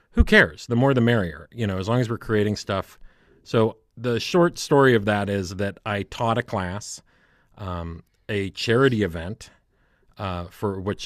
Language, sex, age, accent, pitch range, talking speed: English, male, 40-59, American, 95-110 Hz, 180 wpm